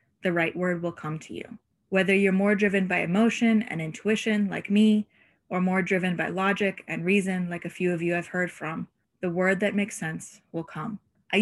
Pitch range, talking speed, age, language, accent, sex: 175-215 Hz, 210 wpm, 20-39, English, American, female